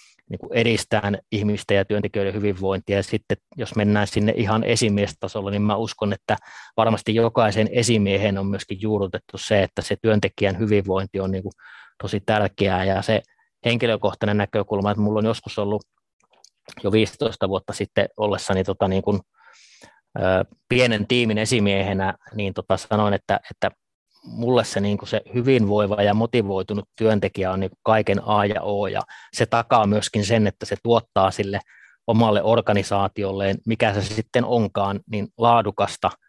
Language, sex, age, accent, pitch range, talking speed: Finnish, male, 20-39, native, 100-110 Hz, 150 wpm